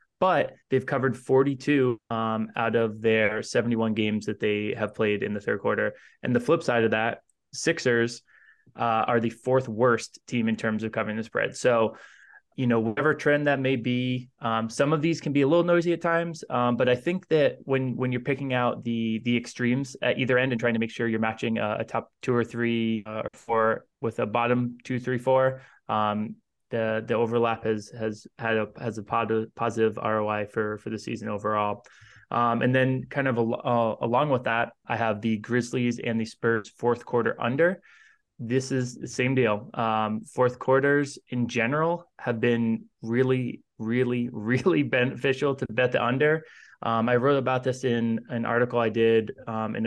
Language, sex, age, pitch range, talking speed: English, male, 20-39, 115-130 Hz, 195 wpm